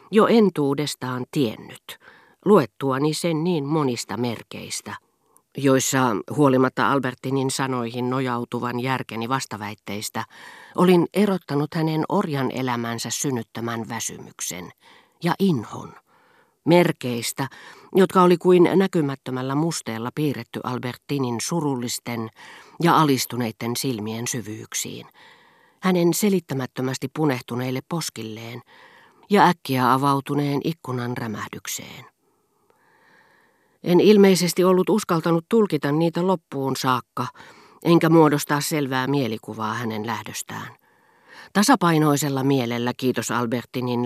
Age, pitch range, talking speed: 40-59, 120-170 Hz, 85 wpm